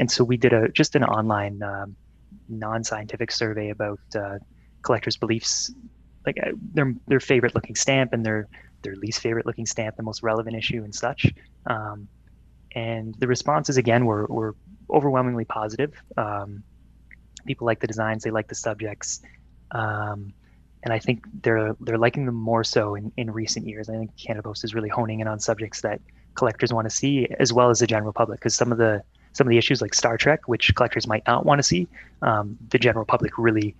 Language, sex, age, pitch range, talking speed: English, male, 20-39, 105-120 Hz, 195 wpm